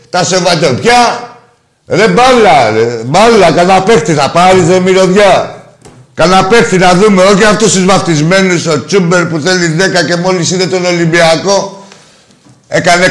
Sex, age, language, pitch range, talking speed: male, 50-69, Greek, 140-185 Hz, 135 wpm